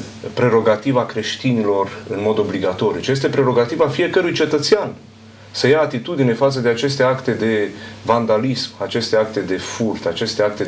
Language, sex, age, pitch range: Romanian, male, 40-59, 105-130 Hz